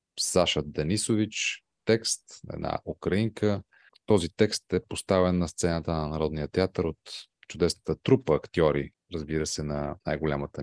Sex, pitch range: male, 80-100 Hz